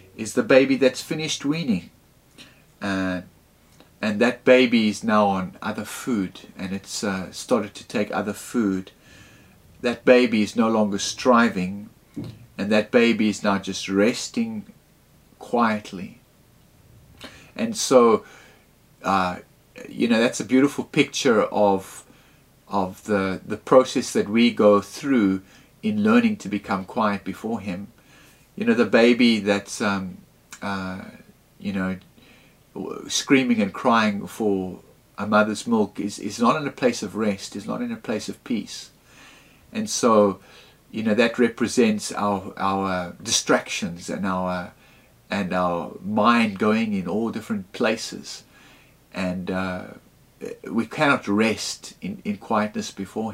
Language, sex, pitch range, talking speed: English, male, 95-145 Hz, 135 wpm